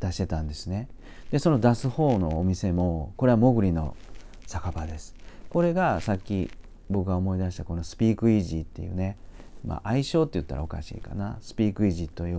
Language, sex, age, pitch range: Japanese, male, 40-59, 85-110 Hz